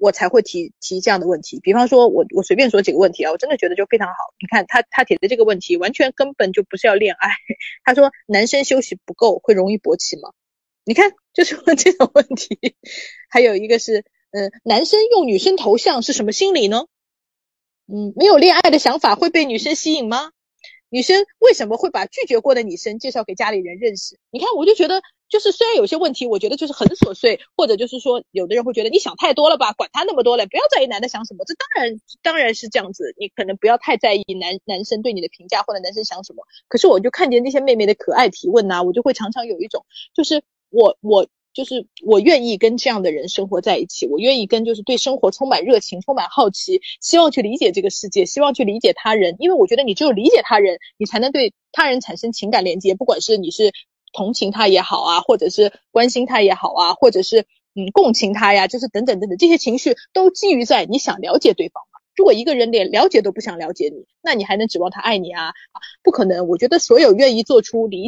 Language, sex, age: Chinese, female, 20-39